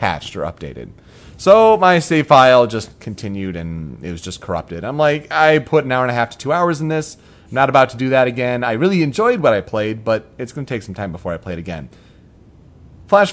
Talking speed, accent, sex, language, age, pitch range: 245 wpm, American, male, English, 30-49, 110-150 Hz